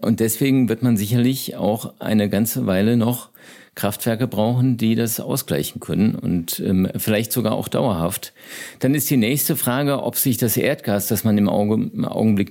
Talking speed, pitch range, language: 165 wpm, 100-125 Hz, German